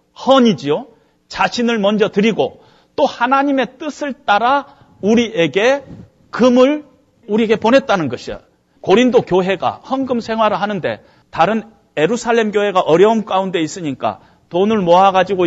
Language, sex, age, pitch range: Korean, male, 40-59, 180-250 Hz